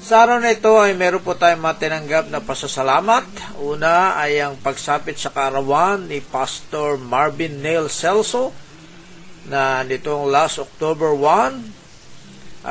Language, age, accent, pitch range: Filipino, 50-69, native, 130-170 Hz